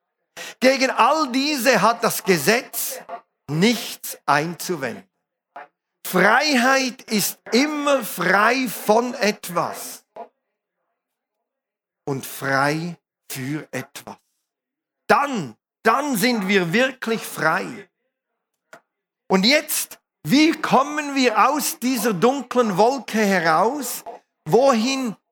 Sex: male